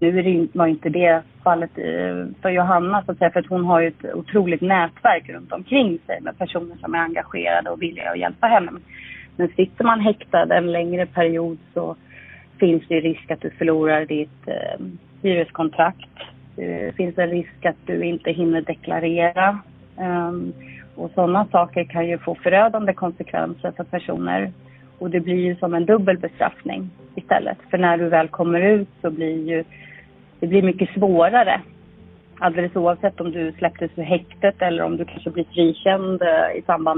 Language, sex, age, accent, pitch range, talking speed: Swedish, female, 30-49, native, 165-185 Hz, 155 wpm